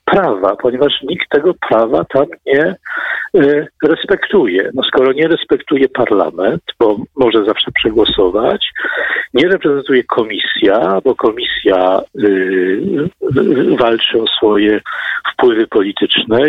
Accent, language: native, Polish